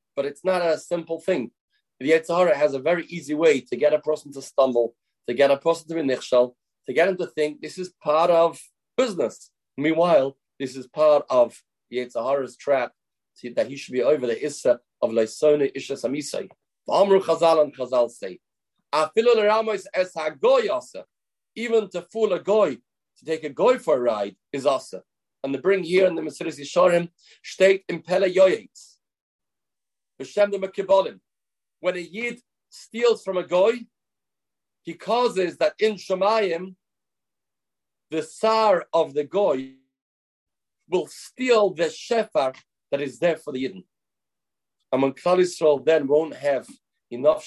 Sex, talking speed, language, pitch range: male, 145 wpm, English, 140-190 Hz